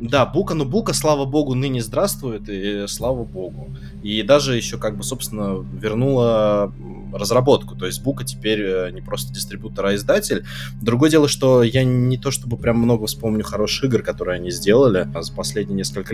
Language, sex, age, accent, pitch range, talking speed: Russian, male, 20-39, native, 95-125 Hz, 170 wpm